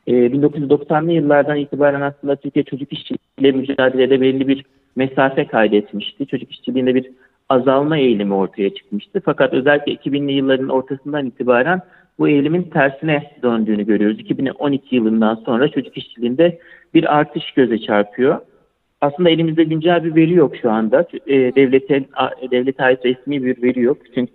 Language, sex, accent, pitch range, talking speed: Turkish, male, native, 125-150 Hz, 135 wpm